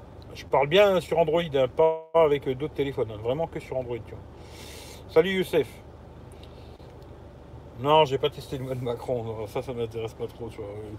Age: 50-69